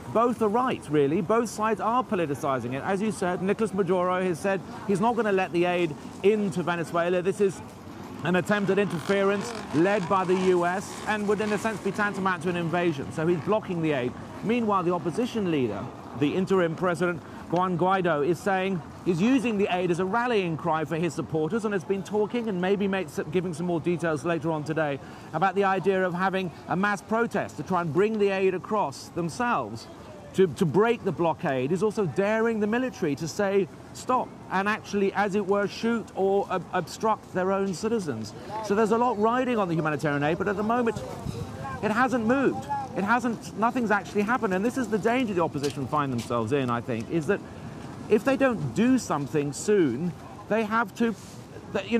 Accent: British